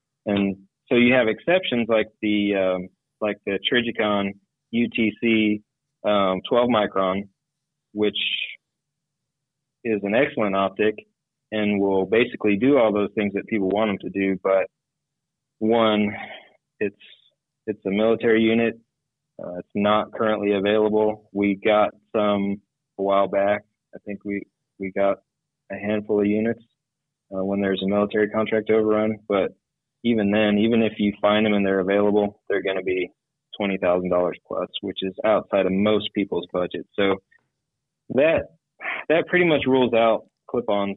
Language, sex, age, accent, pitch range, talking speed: English, male, 30-49, American, 100-115 Hz, 150 wpm